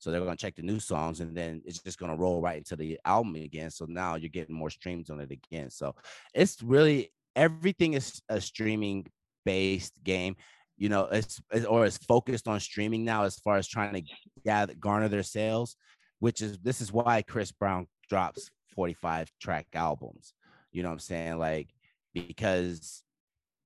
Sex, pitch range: male, 85-110 Hz